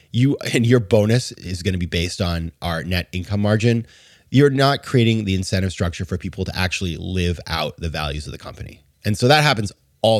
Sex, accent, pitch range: male, American, 85-120 Hz